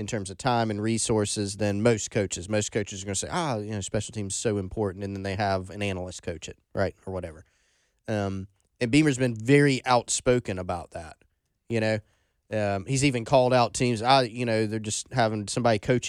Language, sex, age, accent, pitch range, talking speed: English, male, 20-39, American, 100-125 Hz, 215 wpm